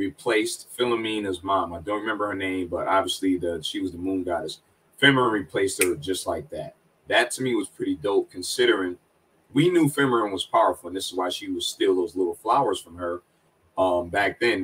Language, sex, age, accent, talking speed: English, male, 30-49, American, 200 wpm